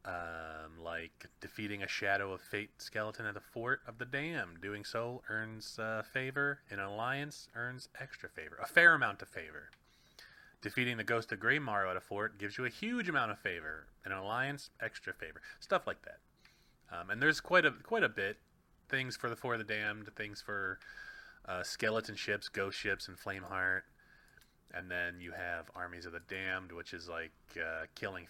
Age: 30-49